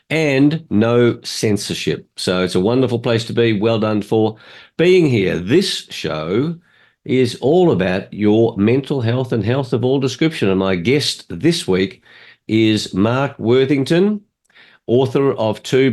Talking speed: 145 wpm